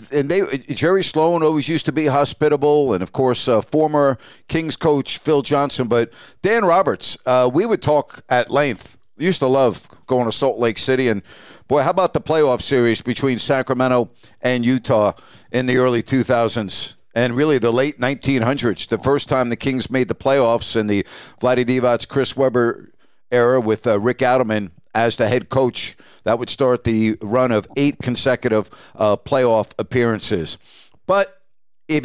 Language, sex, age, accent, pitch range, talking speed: English, male, 50-69, American, 120-155 Hz, 170 wpm